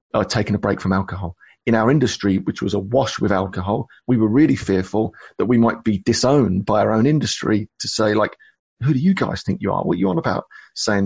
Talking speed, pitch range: 235 wpm, 105-130 Hz